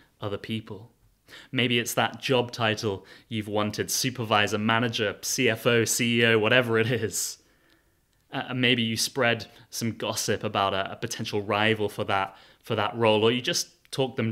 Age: 20-39